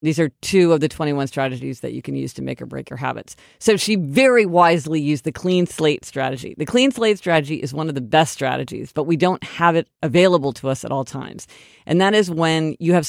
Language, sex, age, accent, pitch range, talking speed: English, female, 40-59, American, 140-170 Hz, 245 wpm